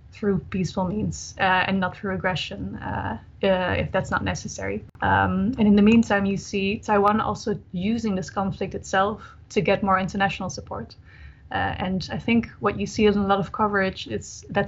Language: English